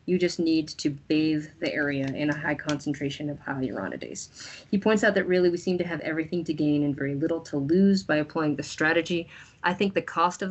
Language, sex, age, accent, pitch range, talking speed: English, female, 30-49, American, 150-175 Hz, 225 wpm